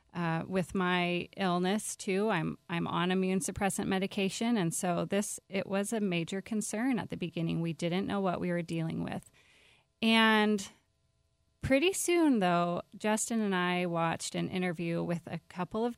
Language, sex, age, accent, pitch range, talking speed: English, female, 30-49, American, 170-200 Hz, 165 wpm